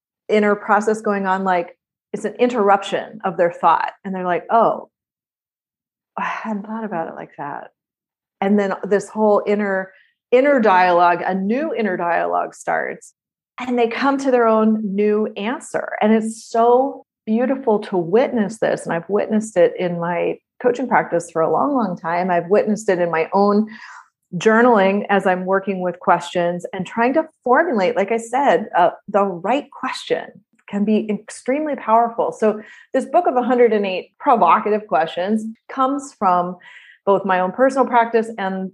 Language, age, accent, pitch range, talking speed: English, 30-49, American, 180-225 Hz, 160 wpm